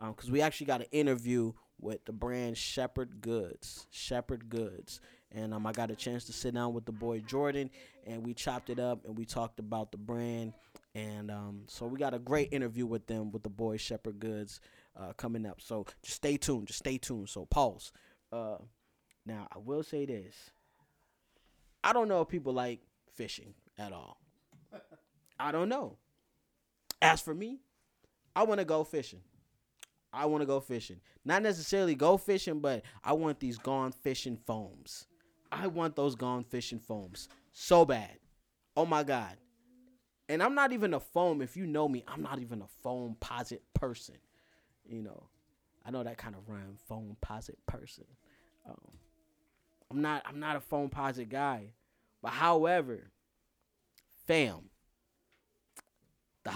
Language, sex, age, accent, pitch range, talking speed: English, male, 20-39, American, 110-150 Hz, 165 wpm